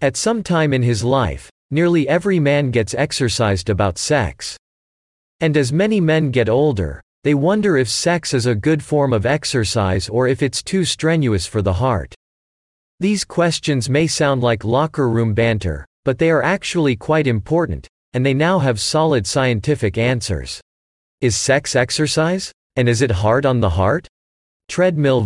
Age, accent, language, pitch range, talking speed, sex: 40-59, American, English, 100-145 Hz, 165 wpm, male